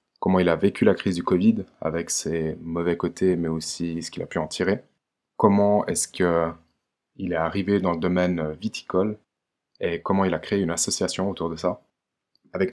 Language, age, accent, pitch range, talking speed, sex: French, 20-39, French, 85-105 Hz, 190 wpm, male